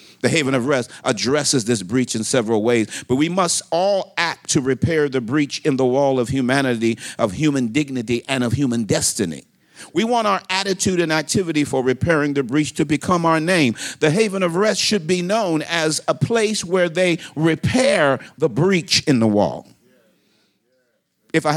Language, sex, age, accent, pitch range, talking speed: English, male, 50-69, American, 130-165 Hz, 180 wpm